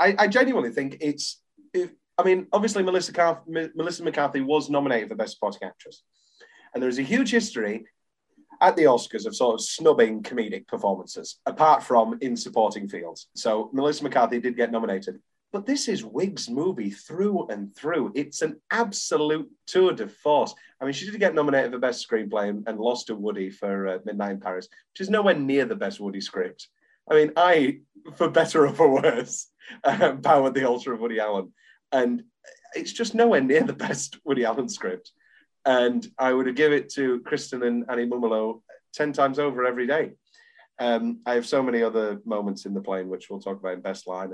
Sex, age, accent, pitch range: male, 30-49, British, 110-185 Hz